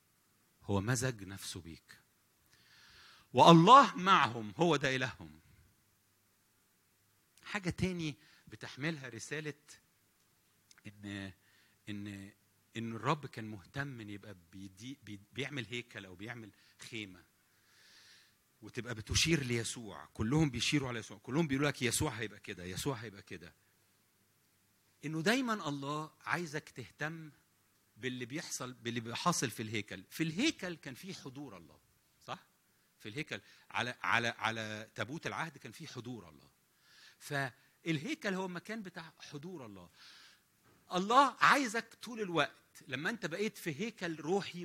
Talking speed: 115 wpm